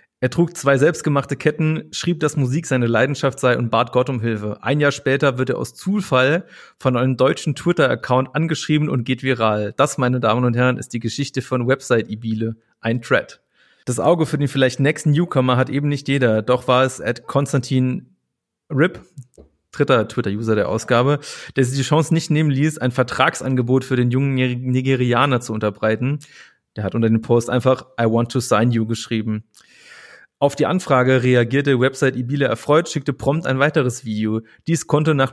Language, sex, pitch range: German, male, 125-150 Hz